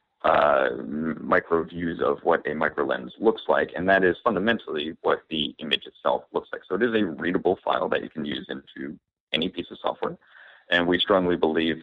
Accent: American